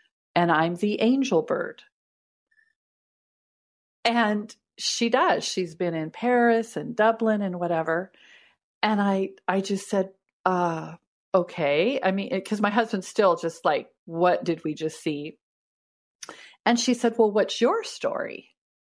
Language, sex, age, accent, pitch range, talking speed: English, female, 40-59, American, 175-235 Hz, 135 wpm